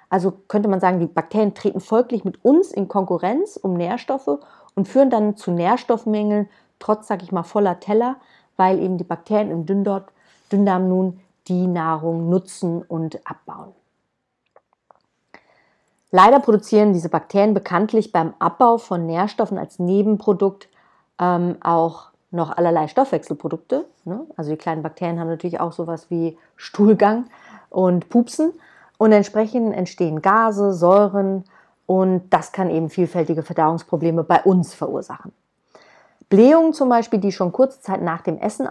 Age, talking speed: 30-49, 140 wpm